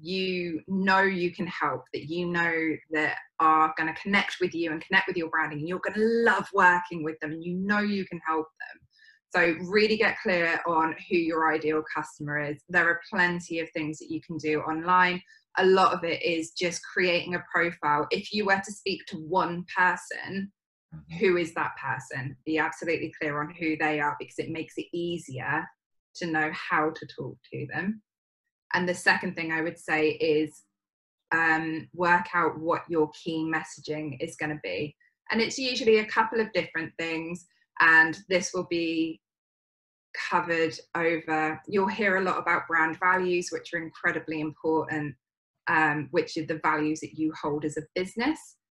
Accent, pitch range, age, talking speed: British, 155-180 Hz, 20-39, 180 wpm